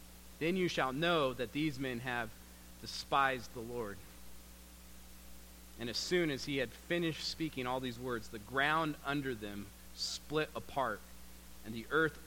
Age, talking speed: 40-59, 150 wpm